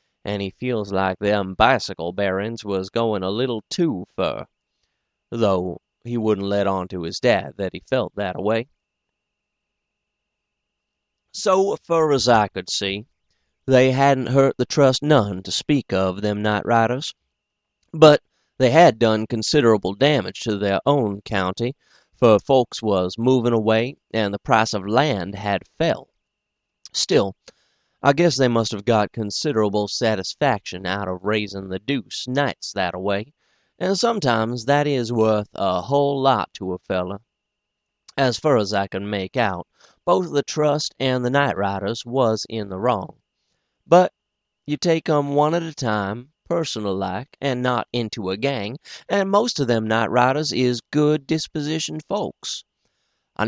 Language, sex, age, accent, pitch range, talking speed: English, male, 30-49, American, 100-140 Hz, 155 wpm